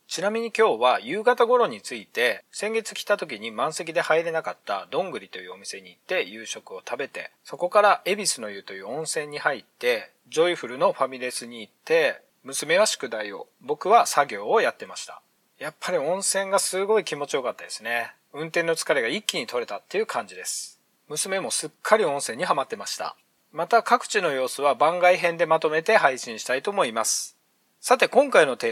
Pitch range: 160-230 Hz